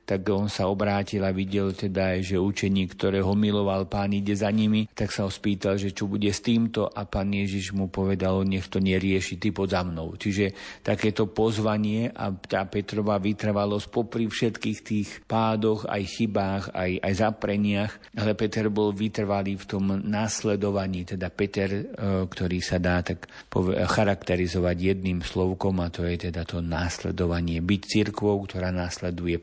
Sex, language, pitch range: male, Slovak, 95-105 Hz